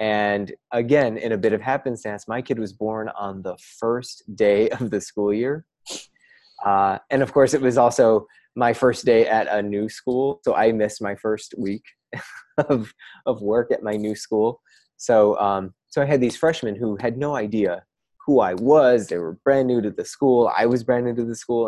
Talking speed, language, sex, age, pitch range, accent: 205 wpm, English, male, 20-39, 105-125 Hz, American